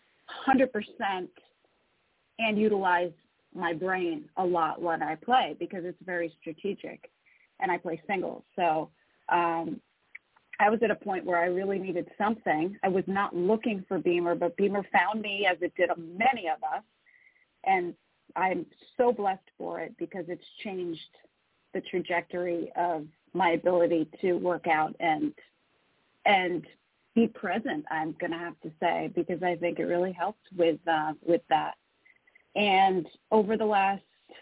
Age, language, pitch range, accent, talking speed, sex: 30-49, English, 175-210 Hz, American, 155 wpm, female